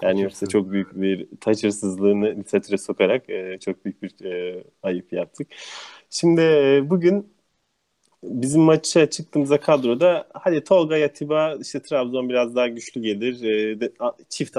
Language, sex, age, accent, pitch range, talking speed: English, male, 30-49, Turkish, 110-150 Hz, 125 wpm